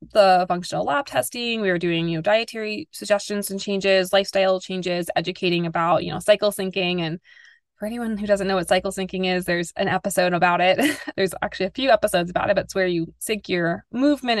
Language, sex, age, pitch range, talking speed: English, female, 20-39, 180-220 Hz, 210 wpm